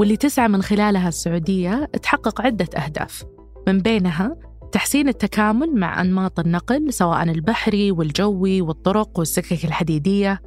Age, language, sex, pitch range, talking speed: 20-39, Arabic, female, 175-225 Hz, 120 wpm